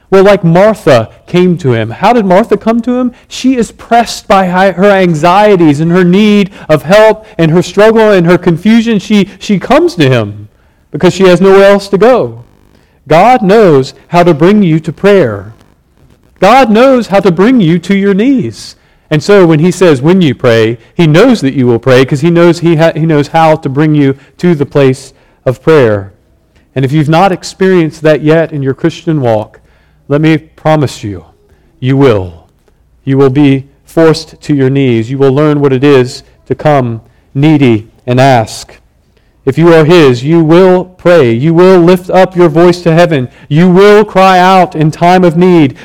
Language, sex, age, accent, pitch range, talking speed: English, male, 40-59, American, 130-180 Hz, 190 wpm